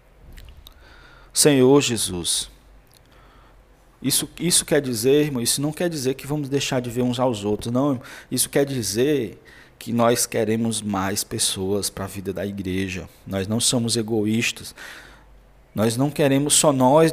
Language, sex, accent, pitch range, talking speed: Portuguese, male, Brazilian, 110-140 Hz, 145 wpm